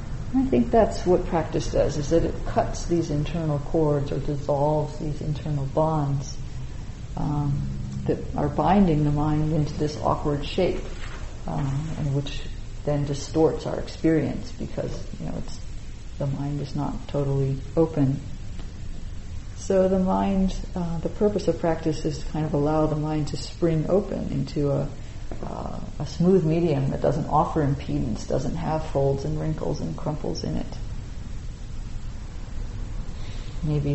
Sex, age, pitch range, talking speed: female, 40-59, 100-155 Hz, 145 wpm